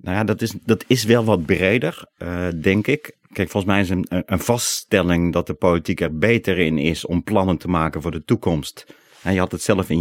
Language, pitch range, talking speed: Dutch, 85-105 Hz, 235 wpm